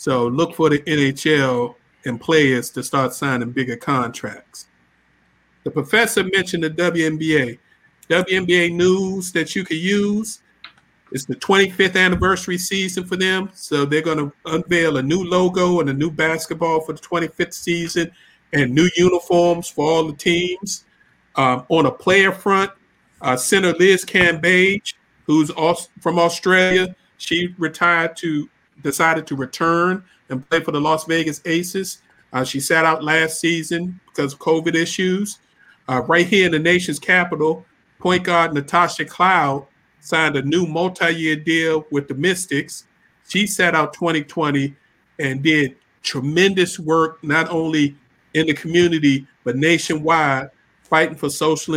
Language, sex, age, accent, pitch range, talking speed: English, male, 50-69, American, 145-175 Hz, 145 wpm